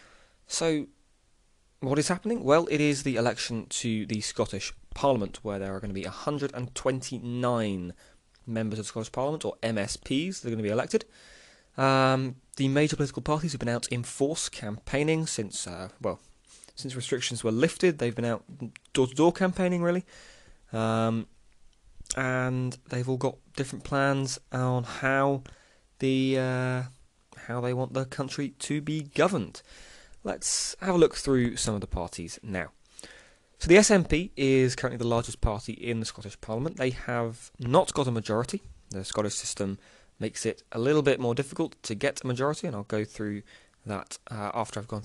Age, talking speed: 20-39, 170 wpm